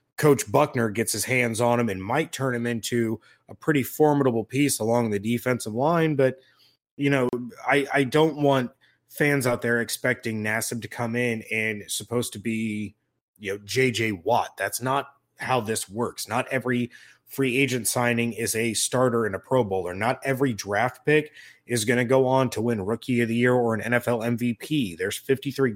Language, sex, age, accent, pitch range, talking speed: English, male, 20-39, American, 110-135 Hz, 190 wpm